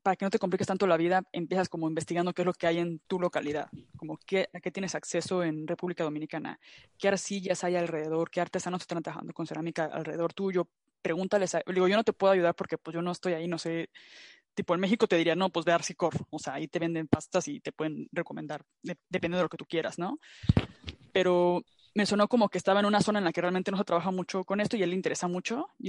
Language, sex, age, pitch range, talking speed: Spanish, female, 20-39, 170-195 Hz, 255 wpm